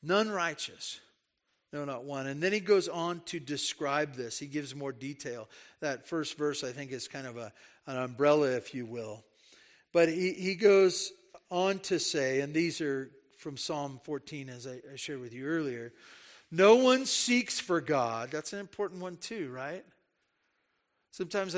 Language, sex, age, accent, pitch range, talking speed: English, male, 40-59, American, 130-170 Hz, 170 wpm